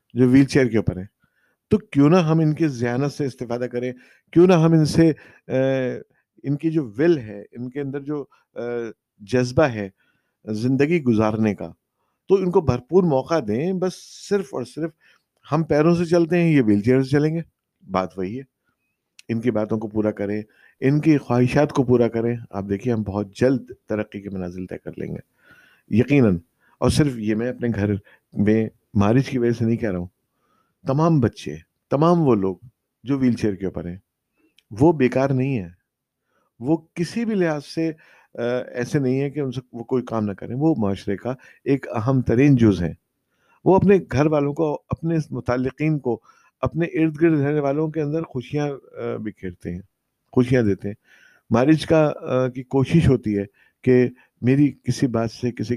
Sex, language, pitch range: male, Urdu, 110-150 Hz